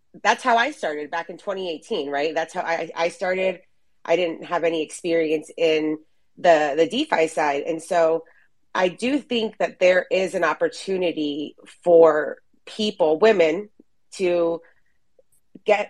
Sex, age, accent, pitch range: female, 30-49, American, 155-185 Hz